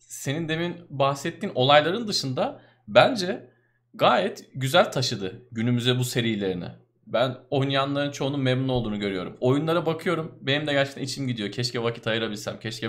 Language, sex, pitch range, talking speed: Turkish, male, 120-145 Hz, 135 wpm